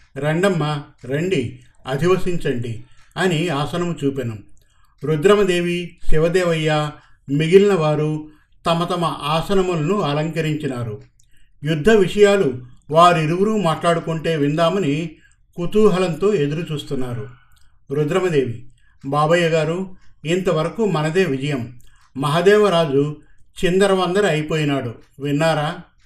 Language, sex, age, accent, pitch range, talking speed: Telugu, male, 50-69, native, 140-185 Hz, 70 wpm